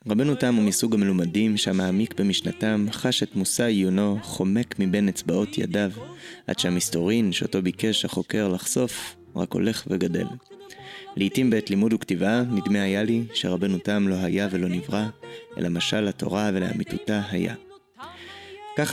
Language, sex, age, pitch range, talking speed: Hebrew, male, 20-39, 95-110 Hz, 135 wpm